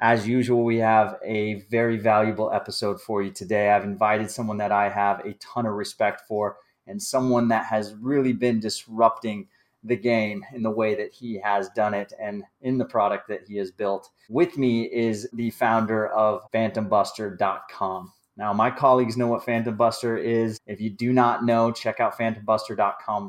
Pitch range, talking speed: 105-120 Hz, 180 wpm